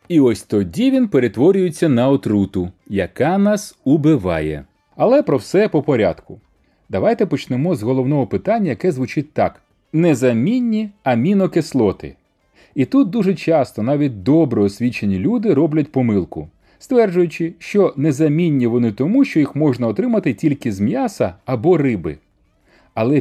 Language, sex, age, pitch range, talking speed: Ukrainian, male, 30-49, 120-175 Hz, 130 wpm